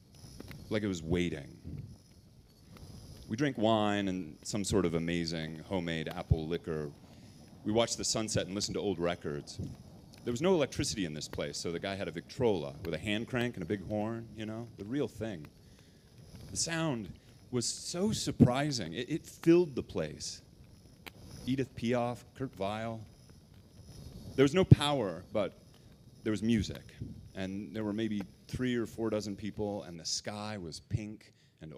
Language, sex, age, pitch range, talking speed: English, male, 30-49, 95-125 Hz, 165 wpm